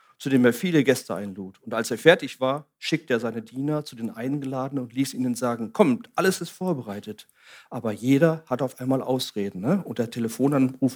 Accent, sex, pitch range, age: German, male, 120-165 Hz, 40-59